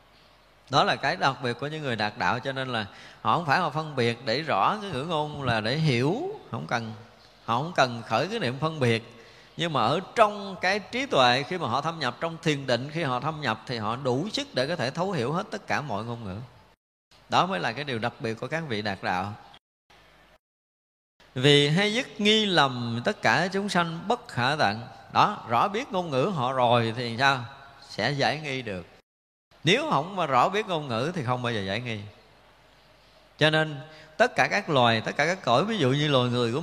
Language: Vietnamese